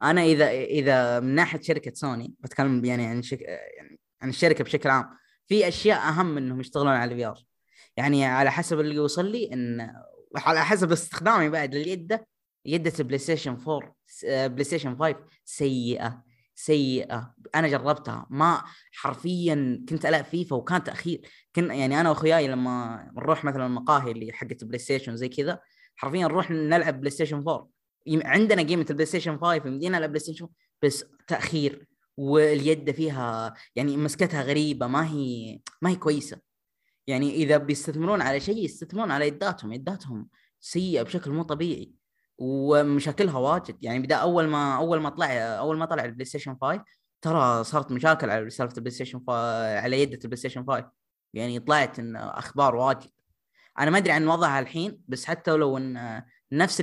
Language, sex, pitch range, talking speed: Arabic, female, 130-165 Hz, 155 wpm